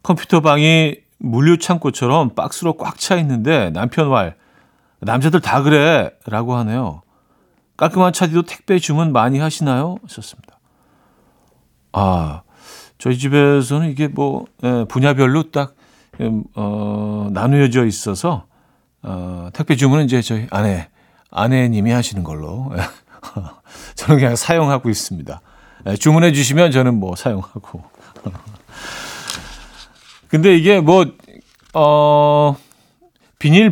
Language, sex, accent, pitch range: Korean, male, native, 115-155 Hz